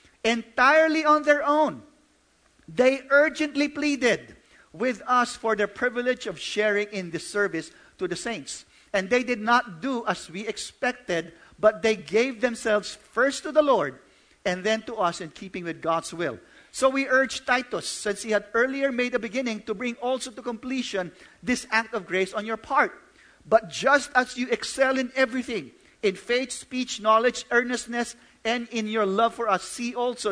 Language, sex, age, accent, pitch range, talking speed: English, male, 50-69, Filipino, 195-250 Hz, 175 wpm